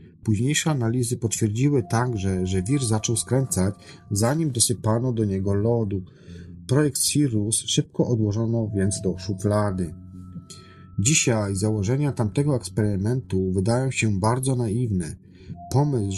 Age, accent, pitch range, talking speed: 40-59, native, 95-125 Hz, 110 wpm